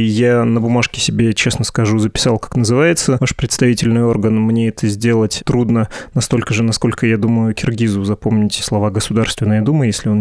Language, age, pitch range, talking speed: Russian, 20-39, 110-130 Hz, 165 wpm